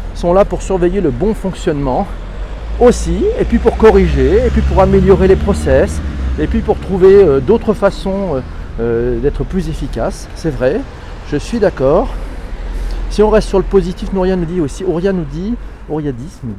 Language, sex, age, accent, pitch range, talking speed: French, male, 40-59, French, 120-180 Hz, 175 wpm